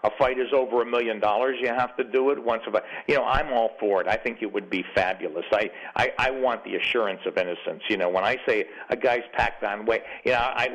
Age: 50-69